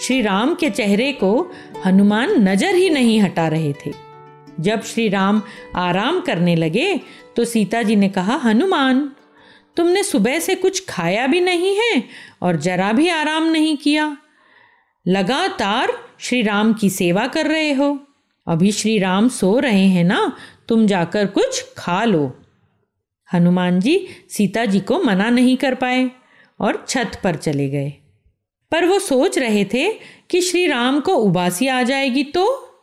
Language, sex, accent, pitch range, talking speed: Hindi, female, native, 190-290 Hz, 155 wpm